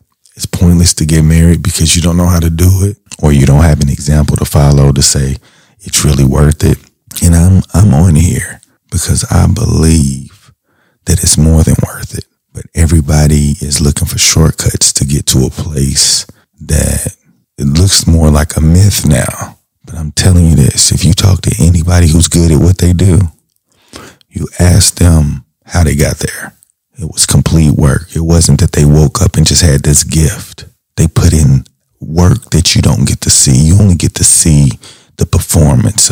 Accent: American